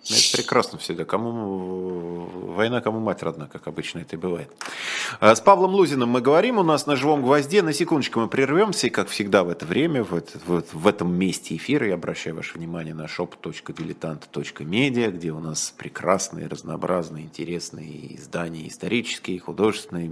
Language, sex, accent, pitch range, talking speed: Russian, male, native, 85-110 Hz, 160 wpm